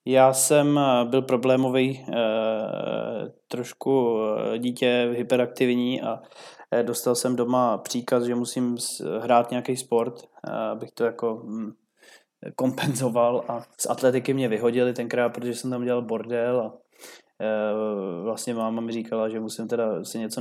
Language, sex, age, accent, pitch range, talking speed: Czech, male, 20-39, native, 110-125 Hz, 125 wpm